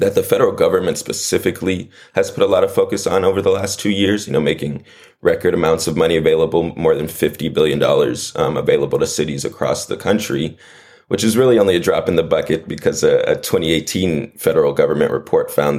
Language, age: English, 20-39